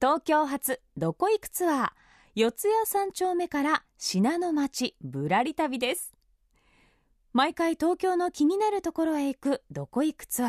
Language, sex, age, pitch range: Japanese, female, 20-39, 225-345 Hz